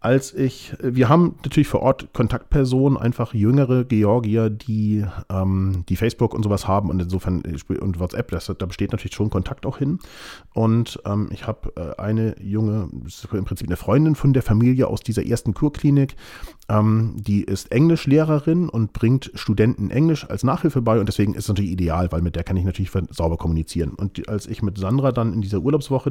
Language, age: German, 30-49